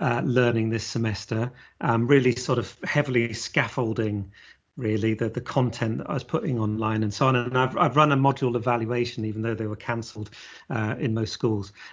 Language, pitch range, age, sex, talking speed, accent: English, 115-135 Hz, 40-59, male, 190 wpm, British